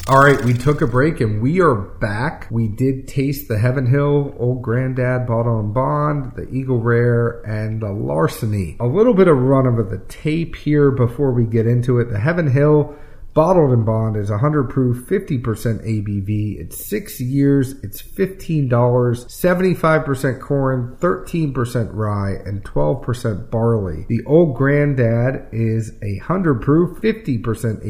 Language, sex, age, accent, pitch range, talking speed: English, male, 40-59, American, 110-140 Hz, 155 wpm